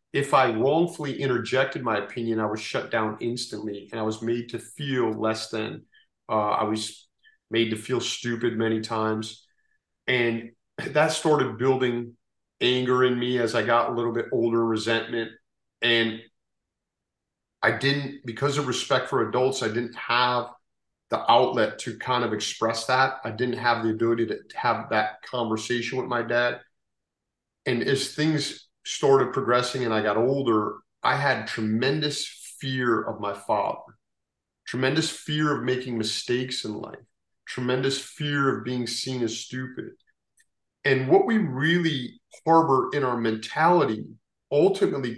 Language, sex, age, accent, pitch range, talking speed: English, male, 40-59, American, 115-135 Hz, 150 wpm